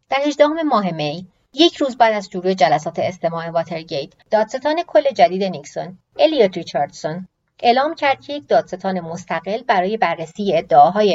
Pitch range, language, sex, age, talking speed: 170-225 Hz, Persian, female, 30-49, 145 wpm